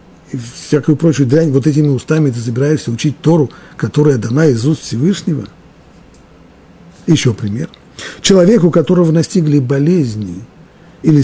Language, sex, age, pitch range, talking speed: Russian, male, 50-69, 115-155 Hz, 115 wpm